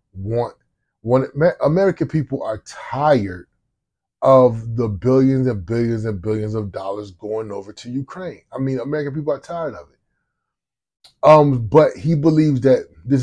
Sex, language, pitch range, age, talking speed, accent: male, English, 105-130 Hz, 30-49, 150 wpm, American